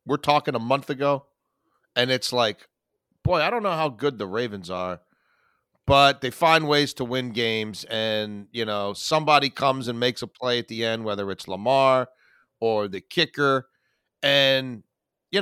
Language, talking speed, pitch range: English, 170 wpm, 125-160 Hz